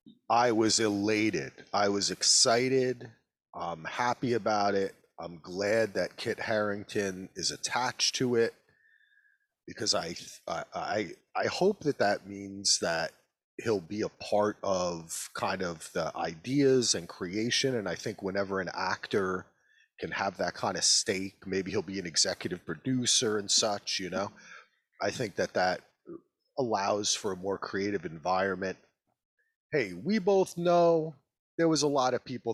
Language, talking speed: English, 150 wpm